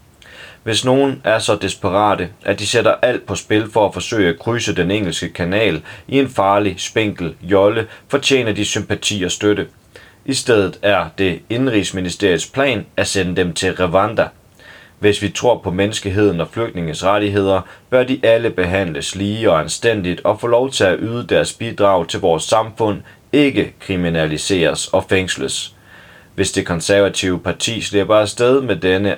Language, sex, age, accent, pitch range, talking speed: Danish, male, 30-49, native, 90-105 Hz, 160 wpm